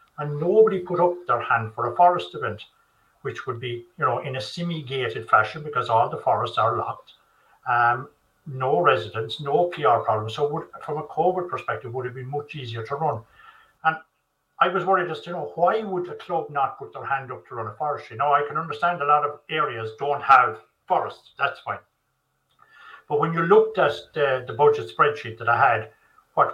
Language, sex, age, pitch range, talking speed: English, male, 60-79, 130-180 Hz, 210 wpm